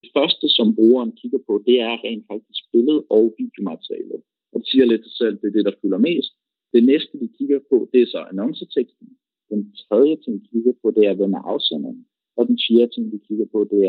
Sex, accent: male, Danish